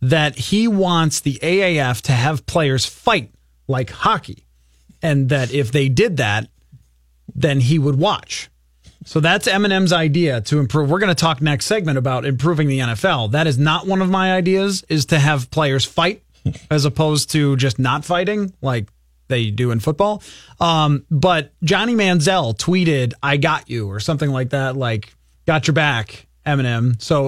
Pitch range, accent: 125-175 Hz, American